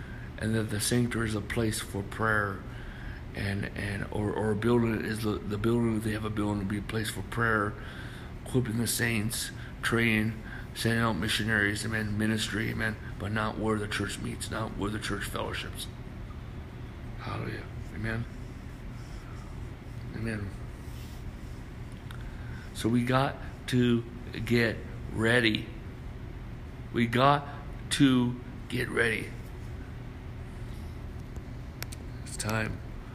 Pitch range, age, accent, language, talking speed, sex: 110-120 Hz, 60-79, American, English, 120 wpm, male